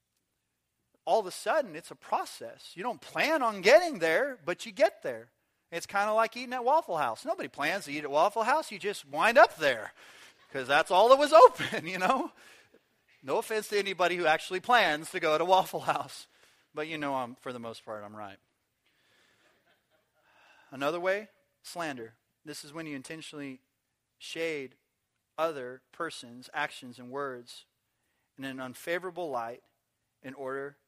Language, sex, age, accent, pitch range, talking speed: English, male, 30-49, American, 130-200 Hz, 170 wpm